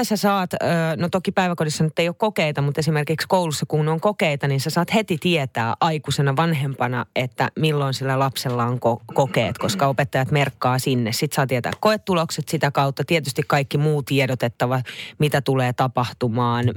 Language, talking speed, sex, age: Finnish, 160 wpm, female, 30-49